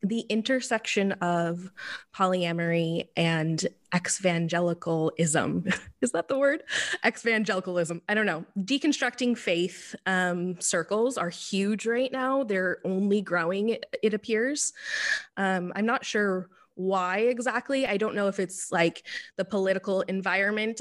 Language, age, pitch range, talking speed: English, 20-39, 180-225 Hz, 120 wpm